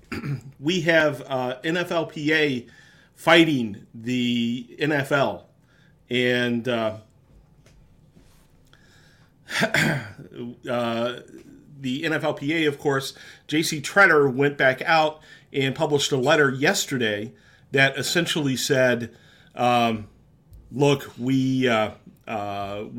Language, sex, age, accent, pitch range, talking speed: English, male, 40-59, American, 125-155 Hz, 85 wpm